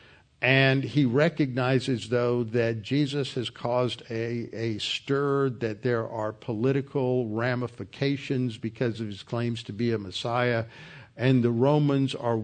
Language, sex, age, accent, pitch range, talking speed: English, male, 60-79, American, 120-135 Hz, 135 wpm